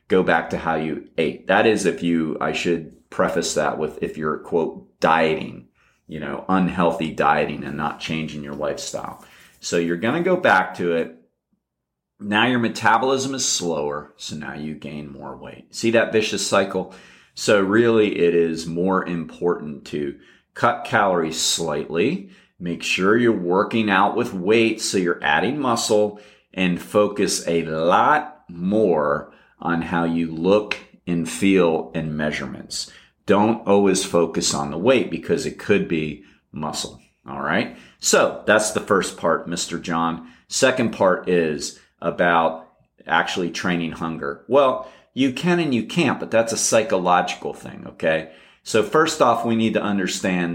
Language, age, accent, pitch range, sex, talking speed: English, 30-49, American, 80-105 Hz, male, 155 wpm